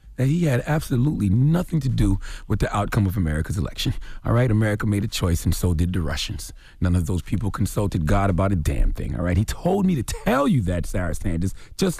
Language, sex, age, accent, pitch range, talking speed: English, male, 30-49, American, 95-140 Hz, 225 wpm